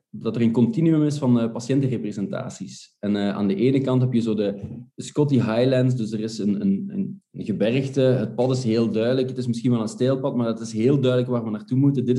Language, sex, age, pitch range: Dutch, male, 20-39, 110-125 Hz